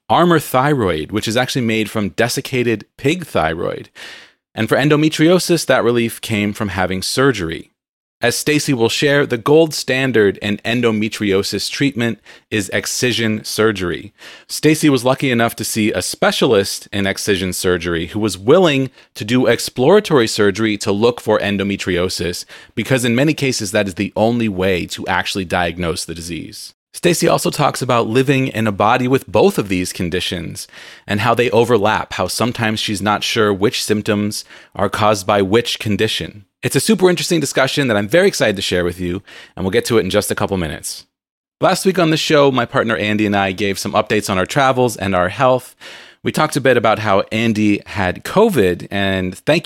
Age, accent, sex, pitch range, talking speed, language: 30-49, American, male, 100-130 Hz, 180 wpm, English